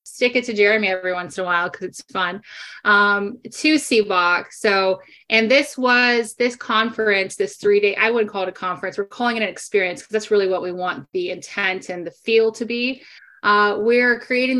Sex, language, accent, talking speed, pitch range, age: female, English, American, 205 wpm, 195-230 Hz, 20-39